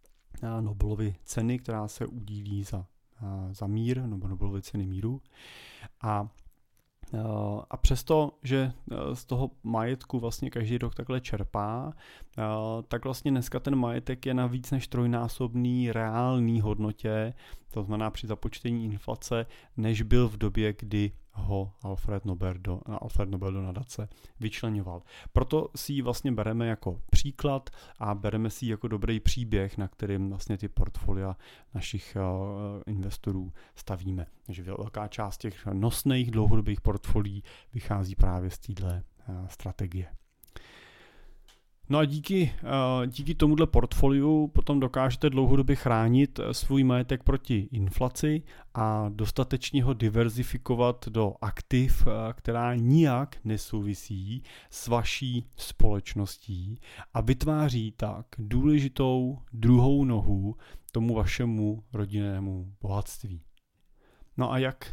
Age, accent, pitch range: 30-49, native, 100-130 Hz